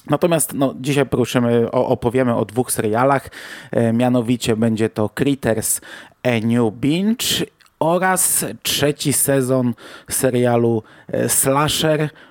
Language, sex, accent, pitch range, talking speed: Polish, male, native, 120-140 Hz, 90 wpm